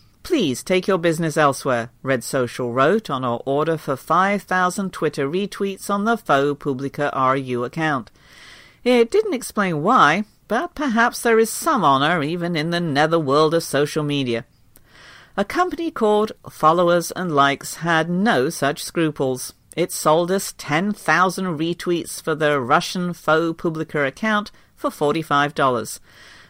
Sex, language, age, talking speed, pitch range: female, English, 50-69, 140 wpm, 140-195 Hz